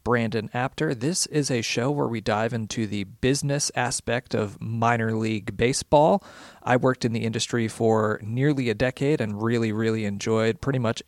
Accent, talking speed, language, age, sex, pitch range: American, 175 wpm, English, 40-59, male, 110-140 Hz